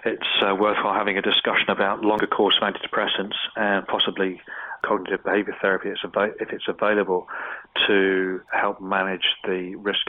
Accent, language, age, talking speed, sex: British, English, 30-49, 135 wpm, male